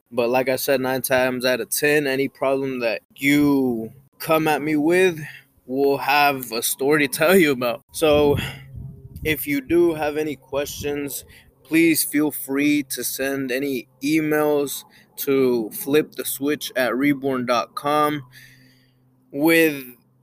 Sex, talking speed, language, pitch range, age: male, 135 wpm, English, 120-145 Hz, 20-39